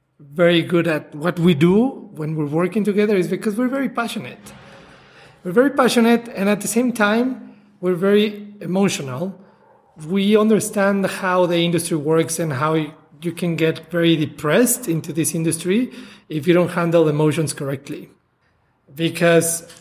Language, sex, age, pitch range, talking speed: English, male, 40-59, 155-185 Hz, 150 wpm